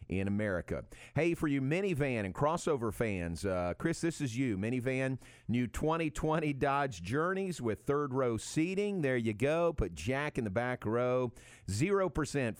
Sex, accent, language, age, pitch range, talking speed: male, American, English, 50-69, 100-145 Hz, 155 wpm